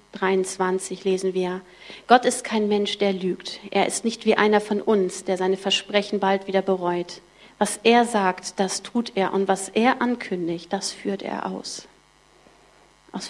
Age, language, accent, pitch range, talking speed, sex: 40-59, German, German, 190-215 Hz, 165 wpm, female